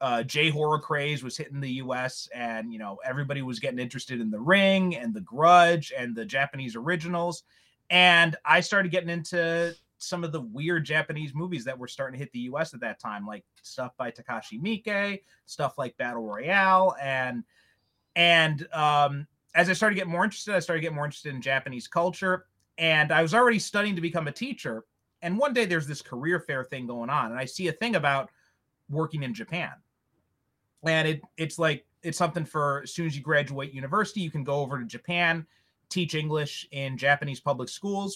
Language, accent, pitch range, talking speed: English, American, 135-175 Hz, 200 wpm